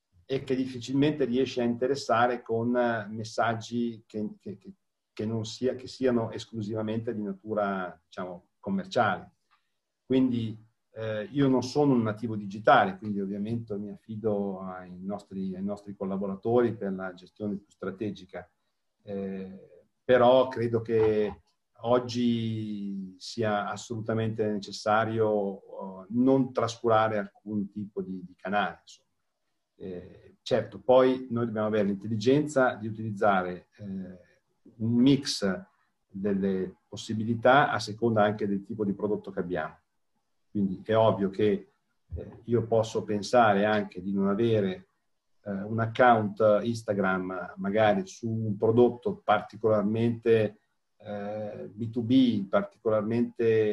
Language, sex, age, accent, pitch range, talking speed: Italian, male, 50-69, native, 100-115 Hz, 120 wpm